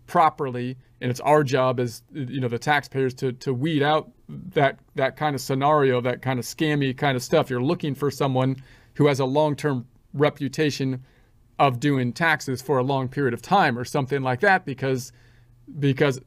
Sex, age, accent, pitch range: male, 40-59, American, 120-140 Hz